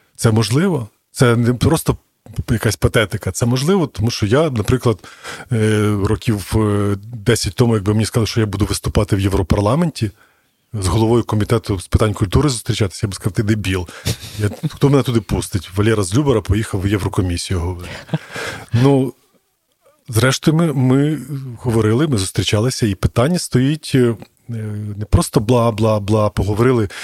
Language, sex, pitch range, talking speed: Ukrainian, male, 105-130 Hz, 140 wpm